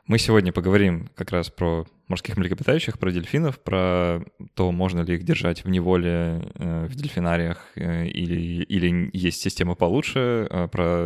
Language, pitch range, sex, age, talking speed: Russian, 85-100 Hz, male, 20-39, 140 wpm